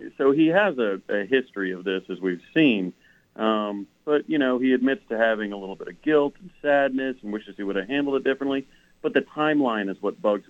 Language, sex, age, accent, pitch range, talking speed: English, male, 40-59, American, 100-125 Hz, 230 wpm